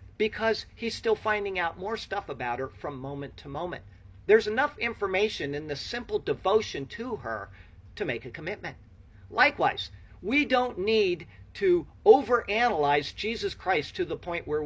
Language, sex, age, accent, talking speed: English, male, 50-69, American, 155 wpm